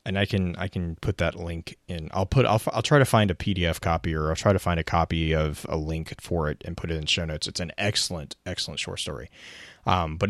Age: 30-49